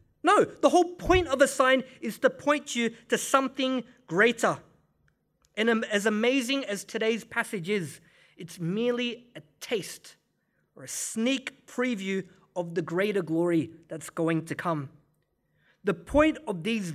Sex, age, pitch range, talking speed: male, 30-49, 185-250 Hz, 145 wpm